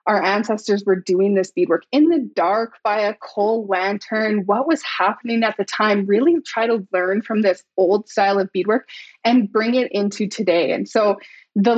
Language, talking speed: English, 190 wpm